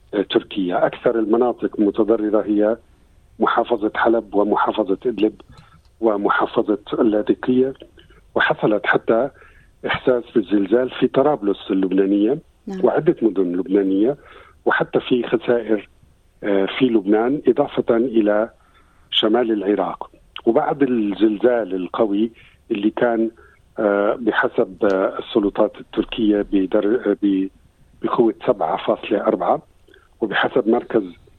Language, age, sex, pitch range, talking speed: Arabic, 50-69, male, 100-125 Hz, 80 wpm